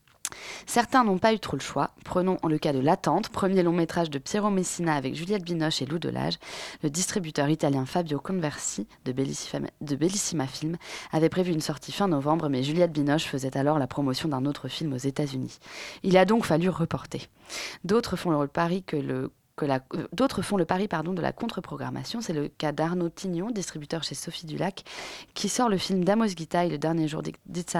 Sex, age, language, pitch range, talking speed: female, 20-39, French, 150-185 Hz, 200 wpm